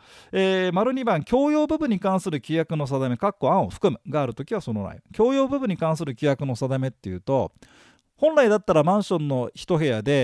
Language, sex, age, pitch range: Japanese, male, 40-59, 130-185 Hz